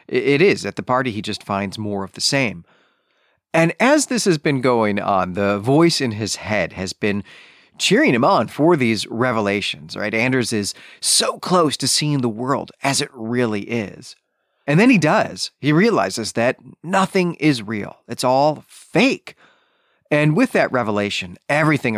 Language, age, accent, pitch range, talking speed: English, 30-49, American, 110-155 Hz, 170 wpm